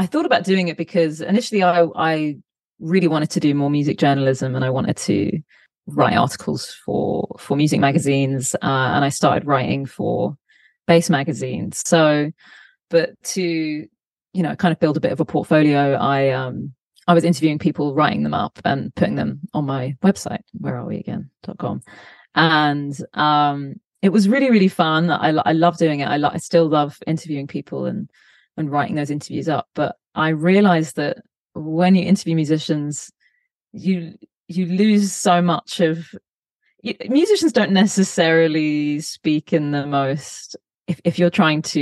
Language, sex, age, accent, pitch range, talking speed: English, female, 30-49, British, 145-180 Hz, 165 wpm